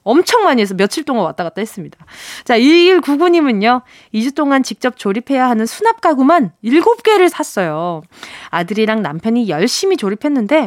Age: 20-39